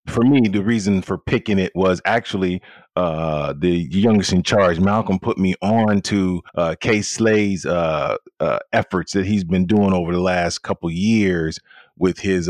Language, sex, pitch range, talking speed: English, male, 85-105 Hz, 175 wpm